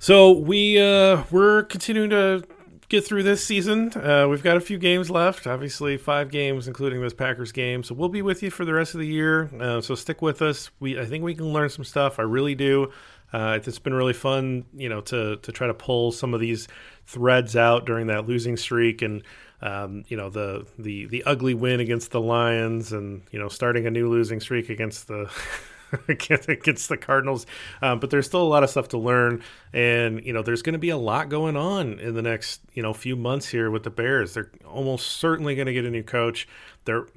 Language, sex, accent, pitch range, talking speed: English, male, American, 115-140 Hz, 225 wpm